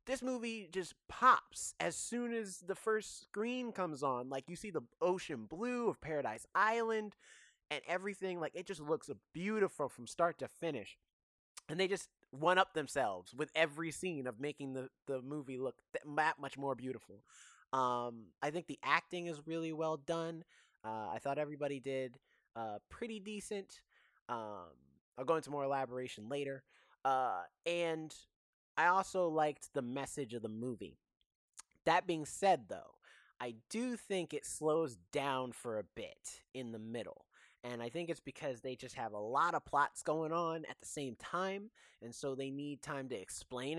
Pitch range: 130-175 Hz